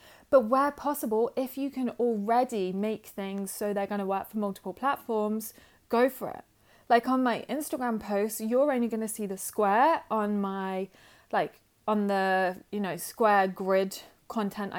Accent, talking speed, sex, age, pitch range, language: British, 170 wpm, female, 20-39, 200-245 Hz, English